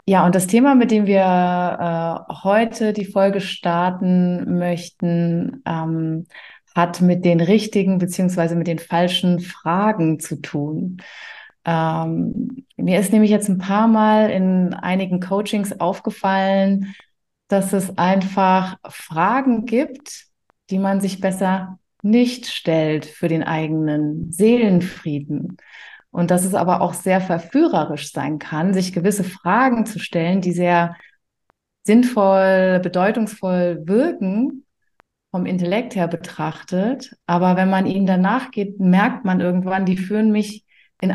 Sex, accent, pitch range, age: female, German, 175-210 Hz, 30-49